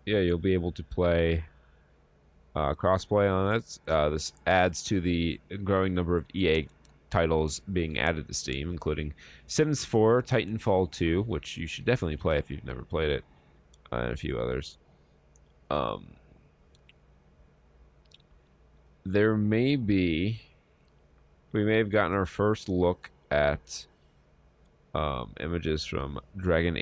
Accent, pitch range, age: American, 70-95 Hz, 30-49